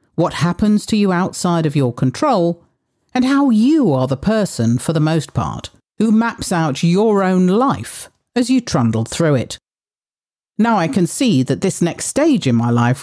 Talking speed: 185 wpm